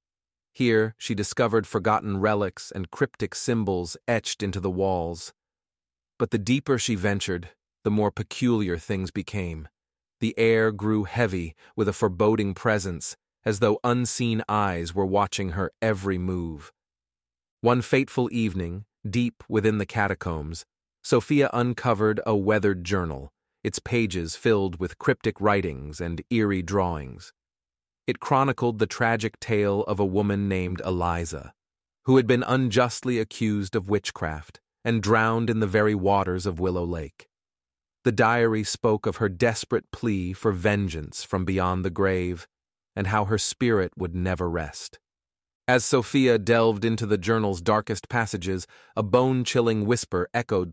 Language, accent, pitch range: English, American, 90-115 Hz